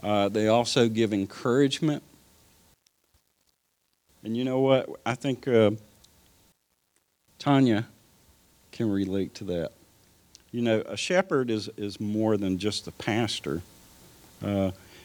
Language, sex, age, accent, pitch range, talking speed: English, male, 50-69, American, 95-115 Hz, 115 wpm